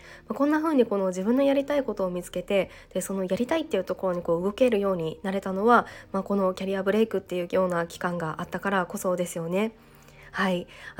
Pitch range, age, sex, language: 190-235 Hz, 20-39, female, Japanese